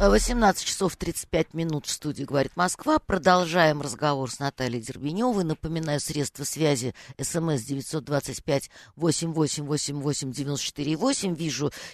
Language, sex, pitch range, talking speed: Russian, female, 145-185 Hz, 95 wpm